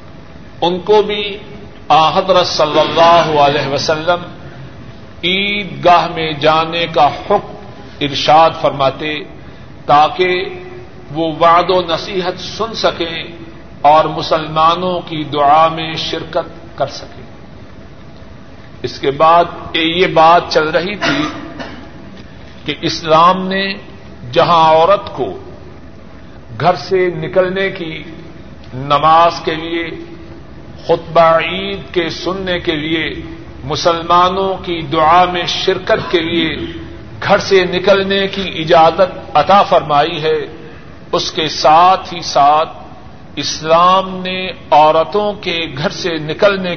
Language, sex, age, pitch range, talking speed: Urdu, male, 50-69, 155-180 Hz, 110 wpm